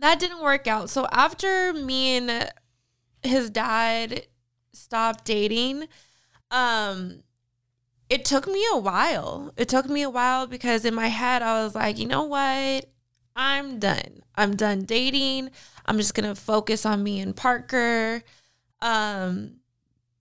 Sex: female